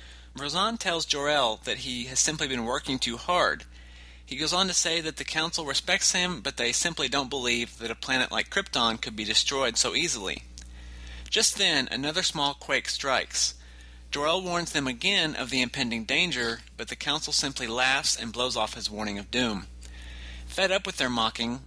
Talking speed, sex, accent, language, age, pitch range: 185 wpm, male, American, English, 30-49, 100-145 Hz